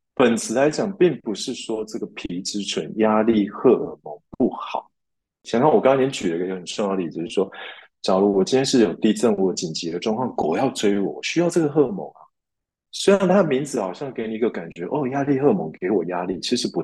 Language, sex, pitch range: Chinese, male, 95-125 Hz